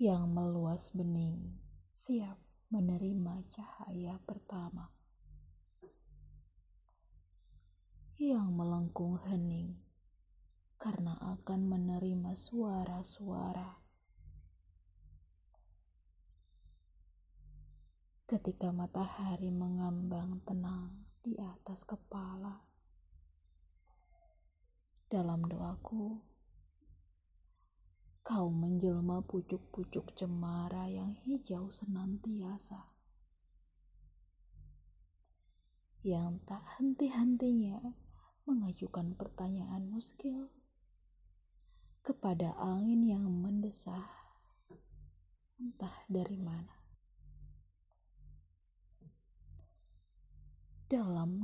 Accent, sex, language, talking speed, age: native, female, Indonesian, 50 wpm, 20-39